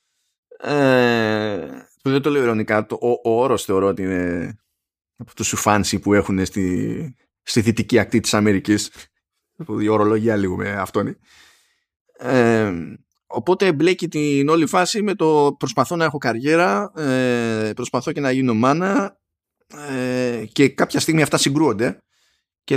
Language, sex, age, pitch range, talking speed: Greek, male, 20-39, 115-155 Hz, 140 wpm